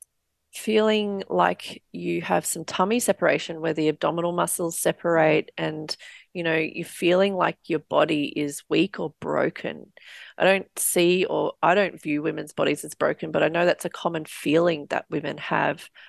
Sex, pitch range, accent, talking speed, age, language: female, 165-200 Hz, Australian, 170 wpm, 30-49, English